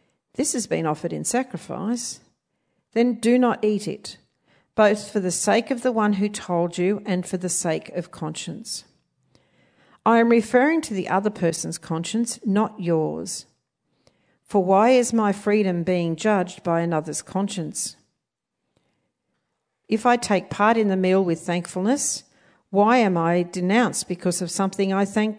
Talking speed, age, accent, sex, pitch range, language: 155 wpm, 50-69, Australian, female, 170-215 Hz, English